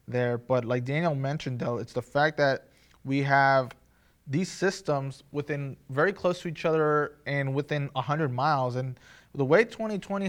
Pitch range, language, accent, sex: 130-155 Hz, English, American, male